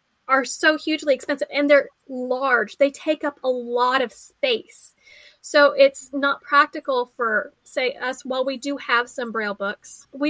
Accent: American